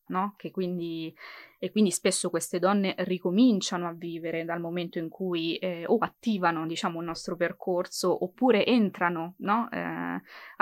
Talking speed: 120 wpm